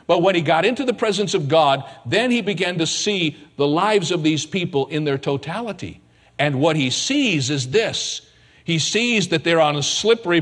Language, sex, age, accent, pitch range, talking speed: English, male, 50-69, American, 125-190 Hz, 200 wpm